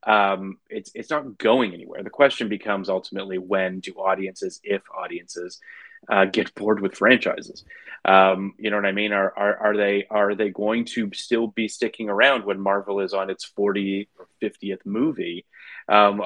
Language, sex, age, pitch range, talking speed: English, male, 30-49, 95-125 Hz, 175 wpm